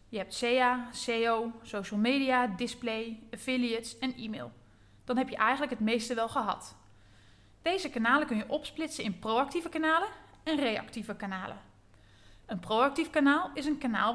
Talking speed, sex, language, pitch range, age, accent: 150 wpm, female, Dutch, 215-285 Hz, 20-39, Dutch